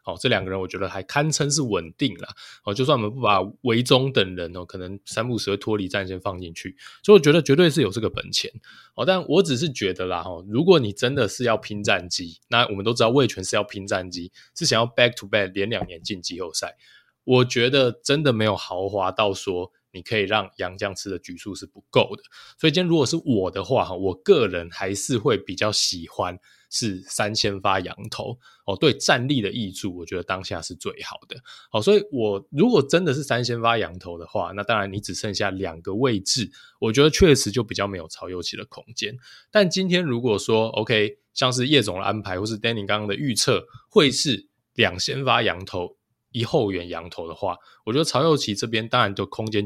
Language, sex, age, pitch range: Chinese, male, 20-39, 95-135 Hz